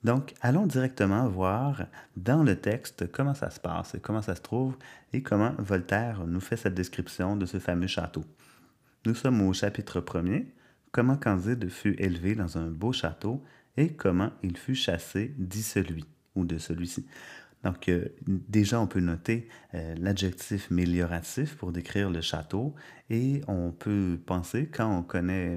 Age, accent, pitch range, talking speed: 30-49, Canadian, 90-115 Hz, 165 wpm